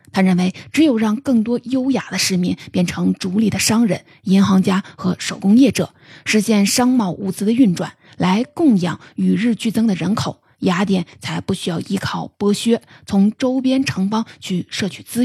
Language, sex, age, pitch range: Chinese, female, 20-39, 180-220 Hz